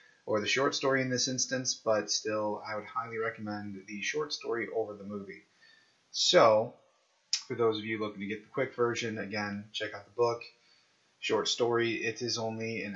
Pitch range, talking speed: 105-120 Hz, 190 wpm